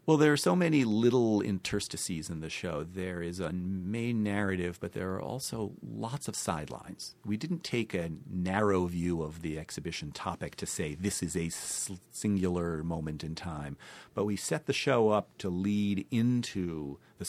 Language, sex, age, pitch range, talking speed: English, male, 40-59, 85-105 Hz, 175 wpm